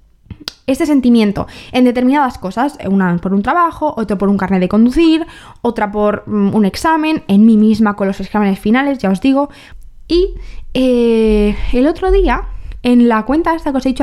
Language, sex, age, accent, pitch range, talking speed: Spanish, female, 20-39, Spanish, 200-255 Hz, 180 wpm